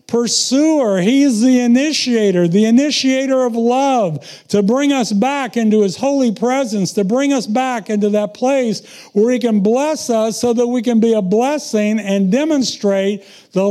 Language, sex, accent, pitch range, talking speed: English, male, American, 170-235 Hz, 165 wpm